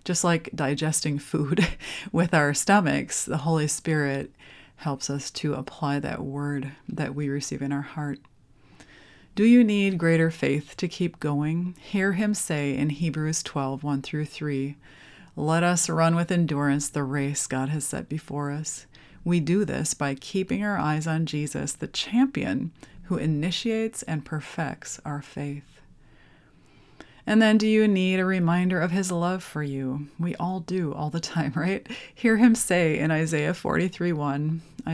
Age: 30-49